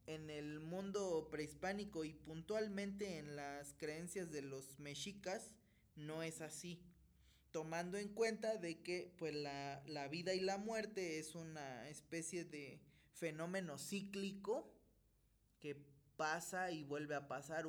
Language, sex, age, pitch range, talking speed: Spanish, male, 20-39, 145-185 Hz, 130 wpm